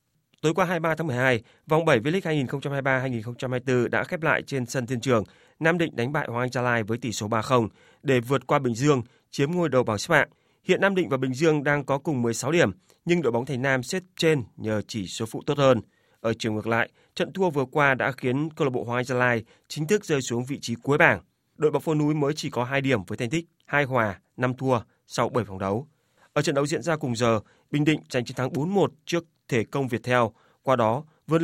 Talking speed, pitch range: 245 wpm, 120-150 Hz